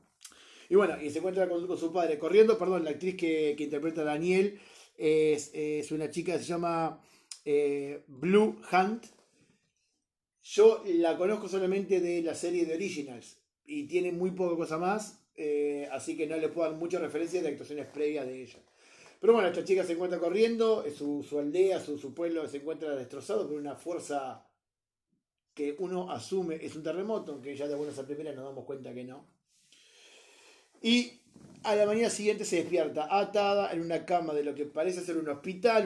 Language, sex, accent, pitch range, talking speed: Spanish, male, Argentinian, 145-185 Hz, 185 wpm